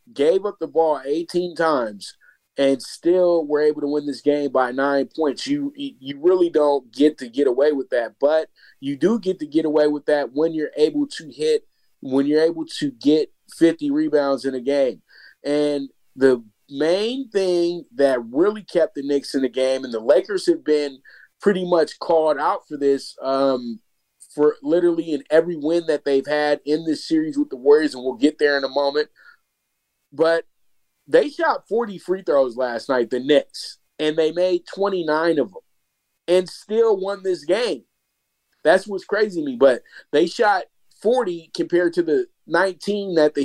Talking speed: 180 wpm